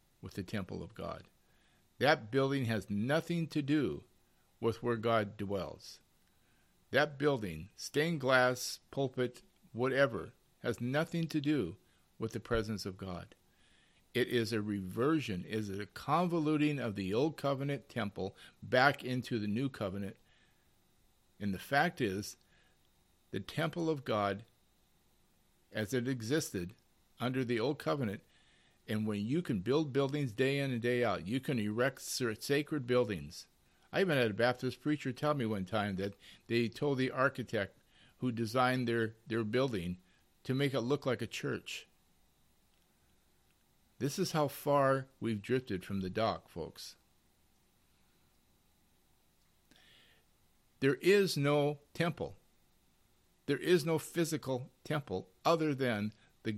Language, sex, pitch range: English, male, 105-145 Hz